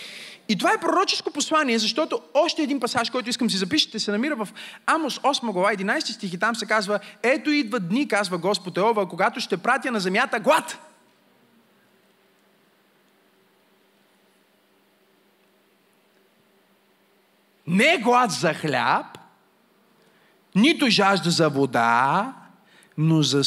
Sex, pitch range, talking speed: male, 155-205 Hz, 120 wpm